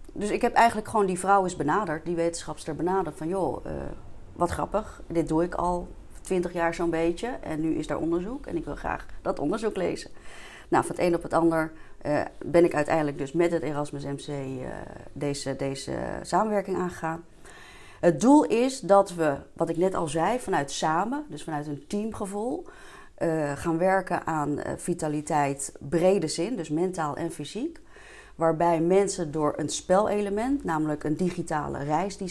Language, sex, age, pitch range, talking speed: Dutch, female, 30-49, 150-180 Hz, 175 wpm